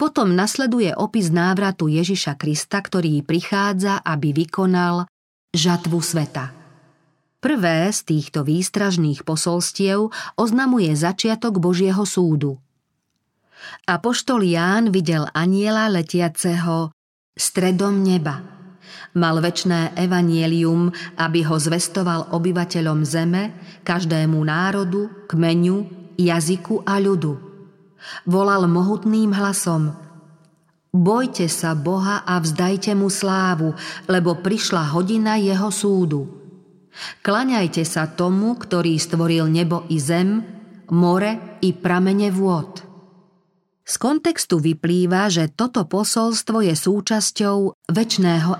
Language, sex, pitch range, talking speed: Slovak, female, 165-195 Hz, 95 wpm